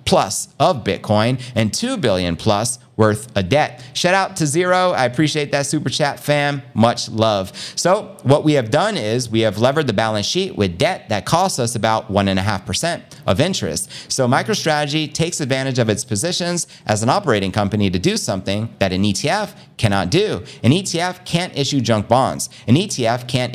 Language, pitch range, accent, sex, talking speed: English, 105-155 Hz, American, male, 180 wpm